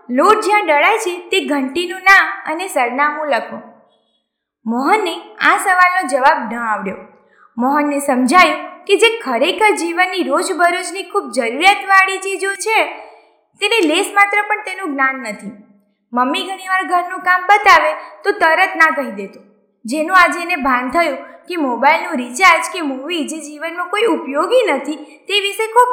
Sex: female